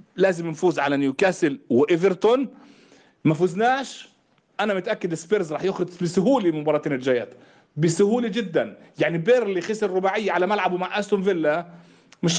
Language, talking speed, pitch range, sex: Arabic, 130 wpm, 175-235 Hz, male